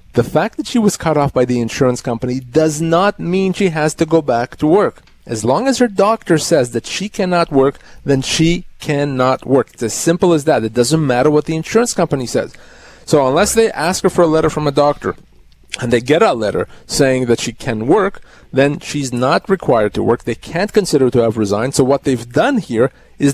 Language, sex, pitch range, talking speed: English, male, 125-165 Hz, 225 wpm